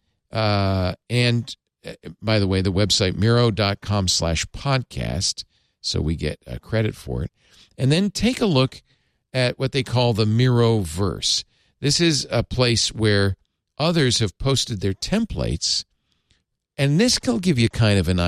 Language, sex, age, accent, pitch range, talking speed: English, male, 50-69, American, 95-130 Hz, 150 wpm